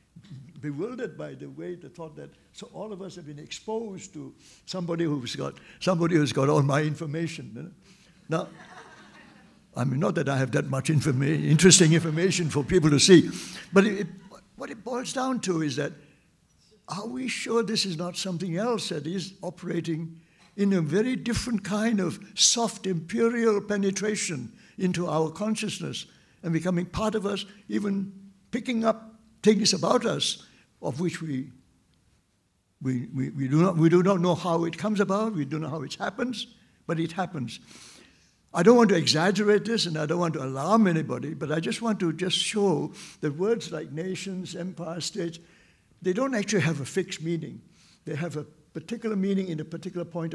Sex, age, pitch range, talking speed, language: male, 60-79, 155-195 Hz, 180 wpm, English